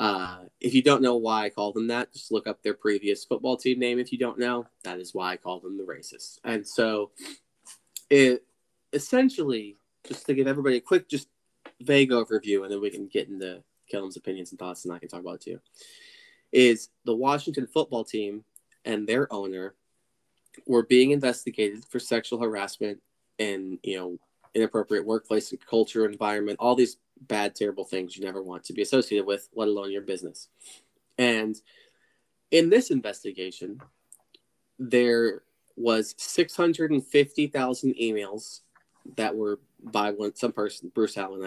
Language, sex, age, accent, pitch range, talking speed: English, male, 20-39, American, 100-125 Hz, 165 wpm